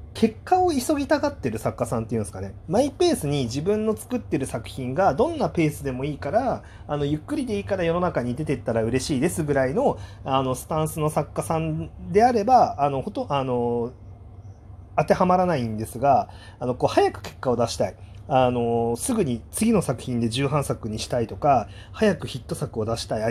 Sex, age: male, 30-49